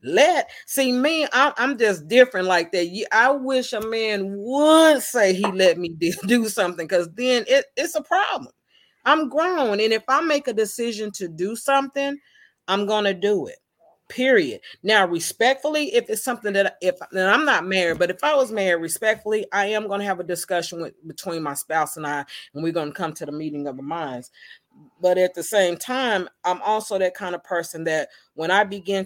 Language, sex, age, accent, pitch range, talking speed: English, female, 40-59, American, 170-220 Hz, 190 wpm